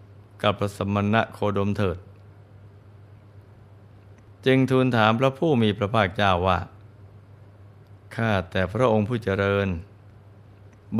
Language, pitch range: Thai, 100-110 Hz